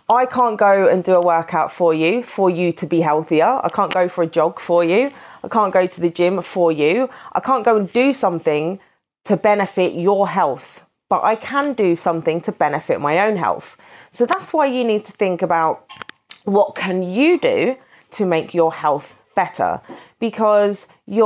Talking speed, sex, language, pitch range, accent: 190 wpm, female, English, 170-235 Hz, British